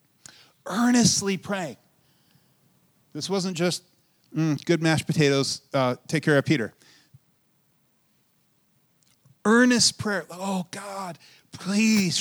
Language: English